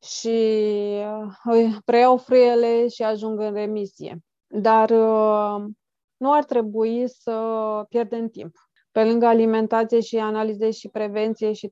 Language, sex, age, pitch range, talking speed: Romanian, female, 20-39, 215-245 Hz, 110 wpm